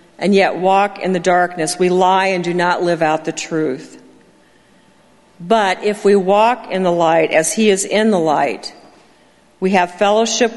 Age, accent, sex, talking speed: 50-69, American, female, 175 wpm